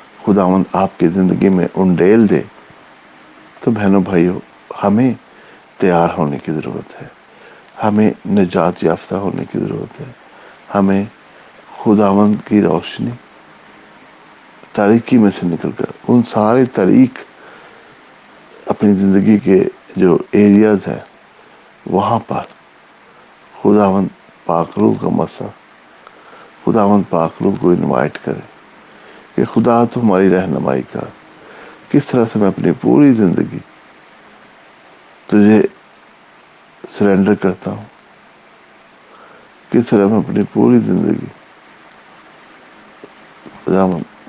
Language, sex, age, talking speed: English, male, 60-79, 100 wpm